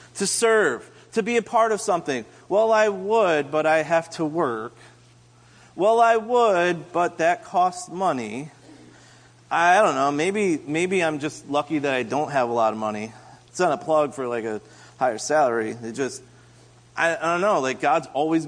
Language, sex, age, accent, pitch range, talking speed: English, male, 30-49, American, 120-180 Hz, 185 wpm